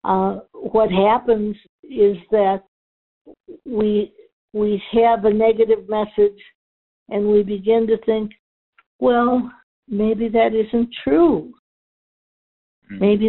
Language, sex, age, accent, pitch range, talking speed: English, female, 60-79, American, 205-230 Hz, 100 wpm